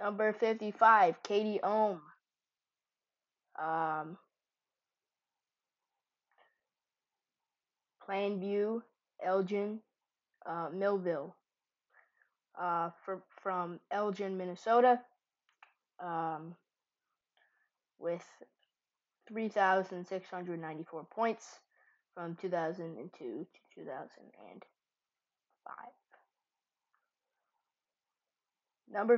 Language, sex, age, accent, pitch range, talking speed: English, female, 20-39, American, 180-215 Hz, 70 wpm